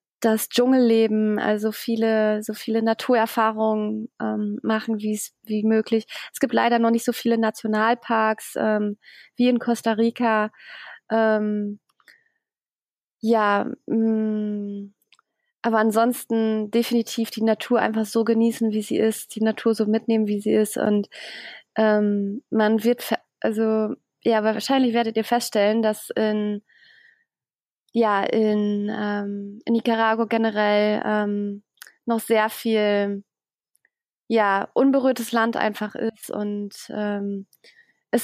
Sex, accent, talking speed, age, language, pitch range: female, German, 120 wpm, 20-39, German, 215-235 Hz